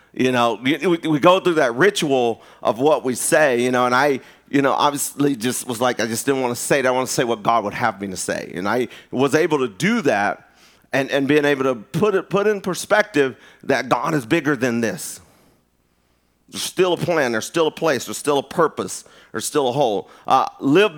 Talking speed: 230 wpm